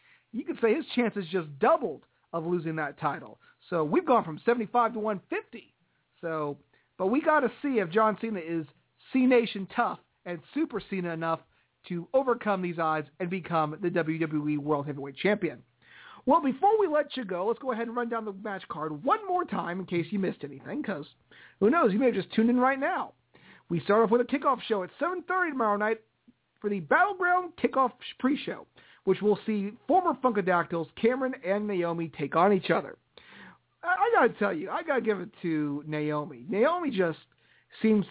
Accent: American